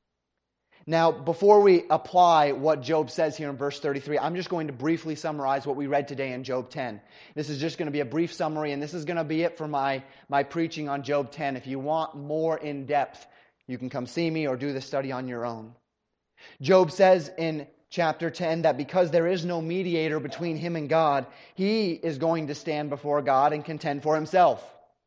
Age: 30-49